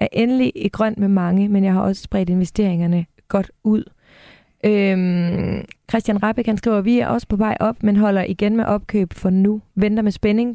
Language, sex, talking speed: Danish, female, 195 wpm